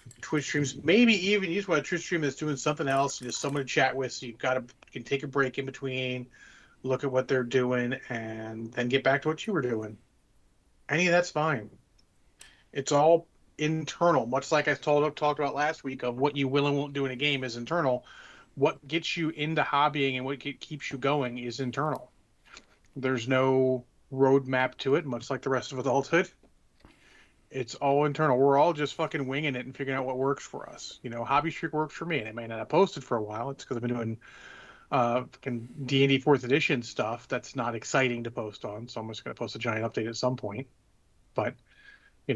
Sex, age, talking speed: male, 30-49, 220 wpm